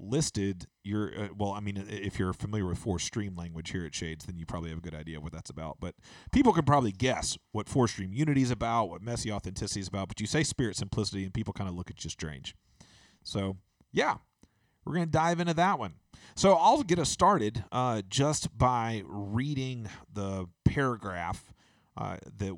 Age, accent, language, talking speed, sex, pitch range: 40-59, American, English, 205 wpm, male, 95-120 Hz